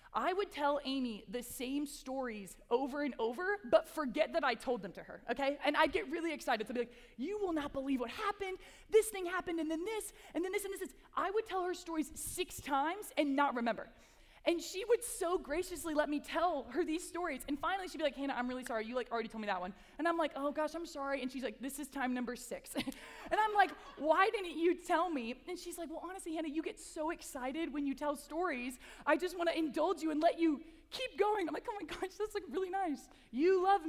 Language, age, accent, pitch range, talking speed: English, 20-39, American, 255-345 Hz, 250 wpm